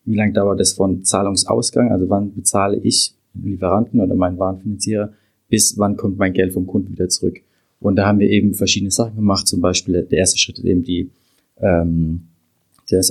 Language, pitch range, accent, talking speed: German, 95-105 Hz, German, 185 wpm